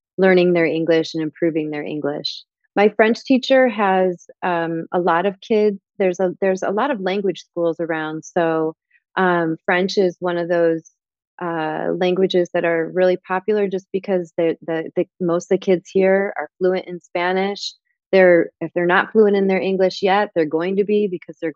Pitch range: 165-190 Hz